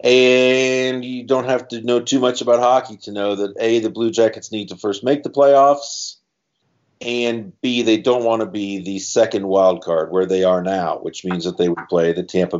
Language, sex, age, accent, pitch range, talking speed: English, male, 50-69, American, 95-115 Hz, 220 wpm